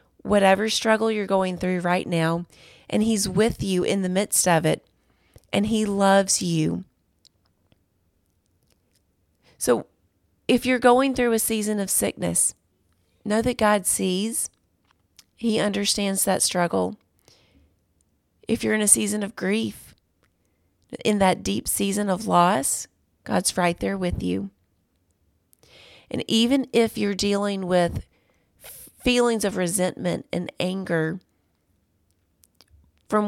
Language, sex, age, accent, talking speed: English, female, 30-49, American, 120 wpm